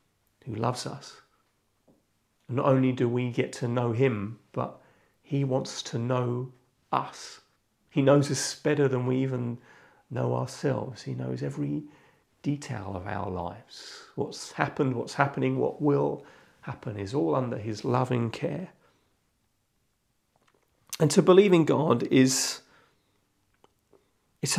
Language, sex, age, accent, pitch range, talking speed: English, male, 40-59, British, 110-145 Hz, 130 wpm